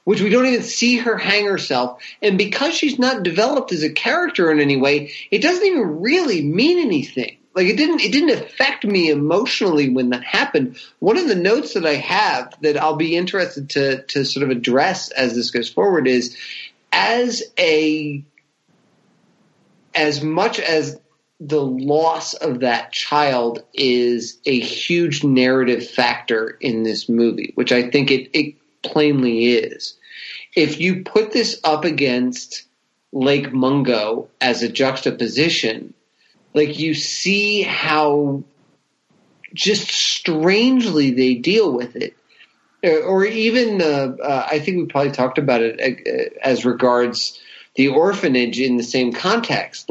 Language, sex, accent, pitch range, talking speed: English, male, American, 130-200 Hz, 150 wpm